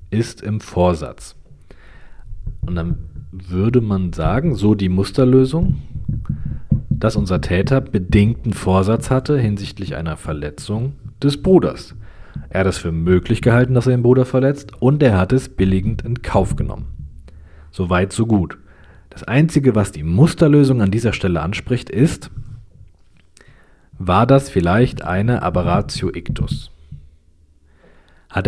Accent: German